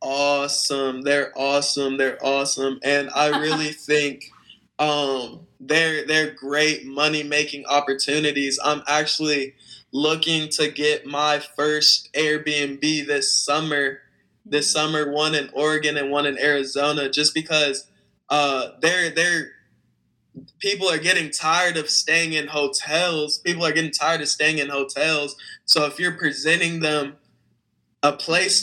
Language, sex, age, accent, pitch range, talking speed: English, male, 20-39, American, 145-160 Hz, 130 wpm